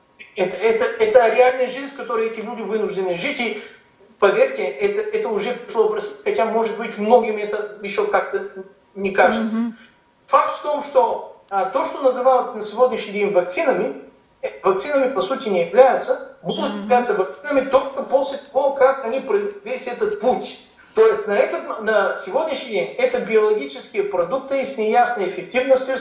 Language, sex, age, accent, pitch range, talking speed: Russian, male, 50-69, native, 205-290 Hz, 155 wpm